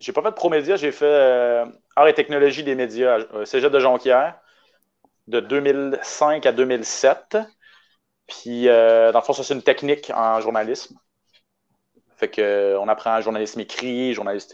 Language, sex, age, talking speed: French, male, 30-49, 155 wpm